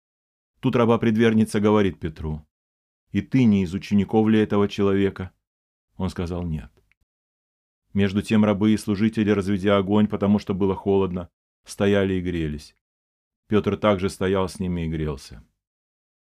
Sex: male